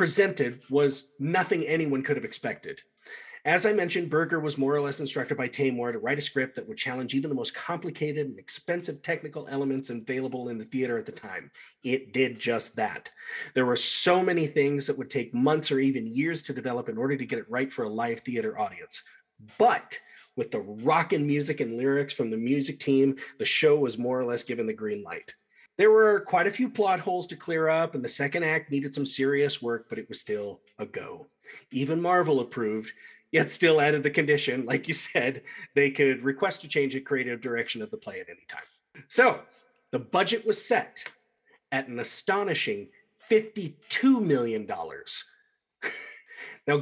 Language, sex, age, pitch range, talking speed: English, male, 30-49, 135-200 Hz, 190 wpm